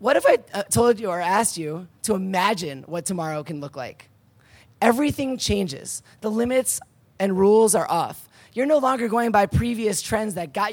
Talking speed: 180 wpm